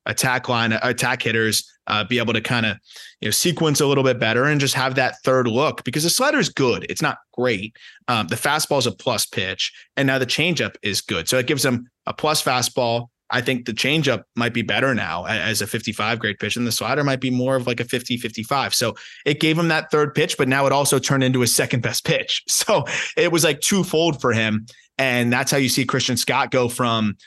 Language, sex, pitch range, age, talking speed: English, male, 115-140 Hz, 20-39, 240 wpm